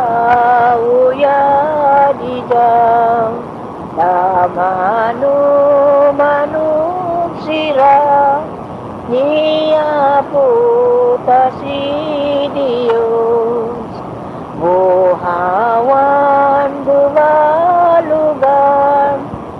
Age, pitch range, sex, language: 50-69, 235-290 Hz, female, English